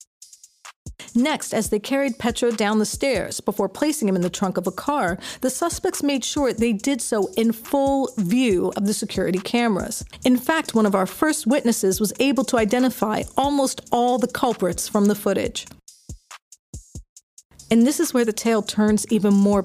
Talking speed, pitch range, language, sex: 175 wpm, 205-255 Hz, English, female